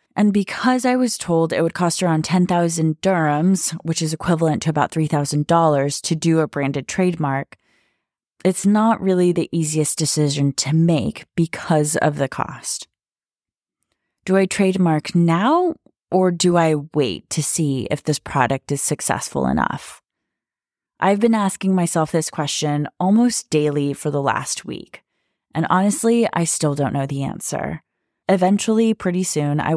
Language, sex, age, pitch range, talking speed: English, female, 20-39, 150-190 Hz, 150 wpm